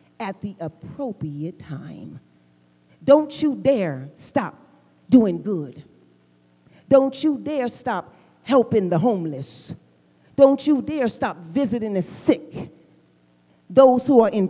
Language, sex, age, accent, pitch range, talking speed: English, female, 40-59, American, 170-270 Hz, 115 wpm